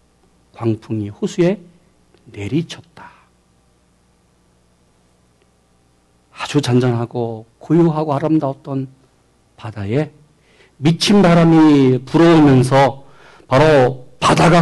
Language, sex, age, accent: Korean, male, 50-69, native